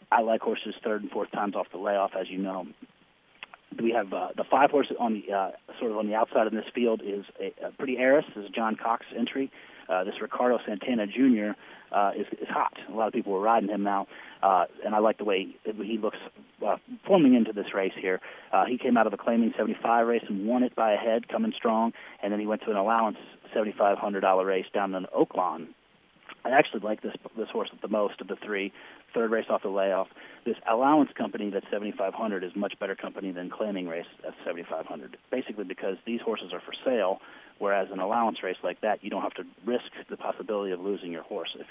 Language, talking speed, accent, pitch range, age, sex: English, 230 wpm, American, 100-120 Hz, 30-49, male